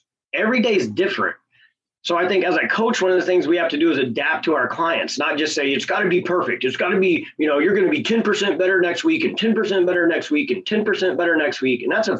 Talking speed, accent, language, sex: 285 wpm, American, English, male